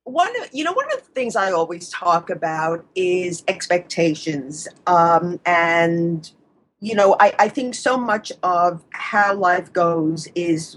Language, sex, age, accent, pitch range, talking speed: English, female, 50-69, American, 165-205 Hz, 150 wpm